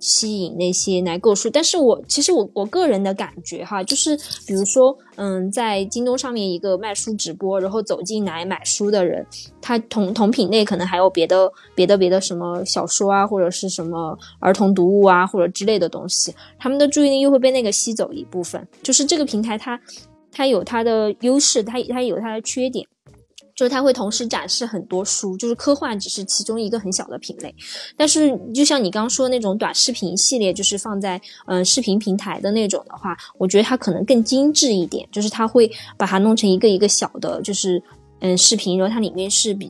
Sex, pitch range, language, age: female, 190-245 Hz, Chinese, 20-39